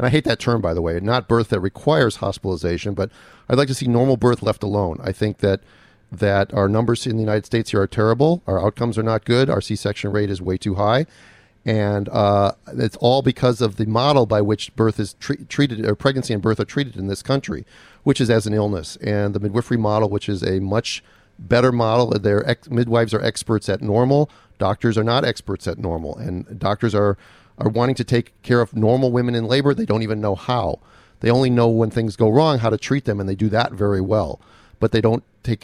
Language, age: English, 40-59